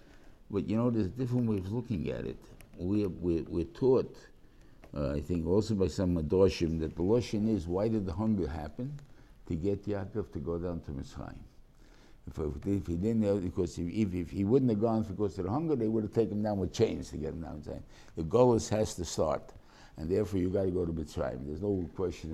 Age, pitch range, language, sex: 60-79, 90-120 Hz, English, male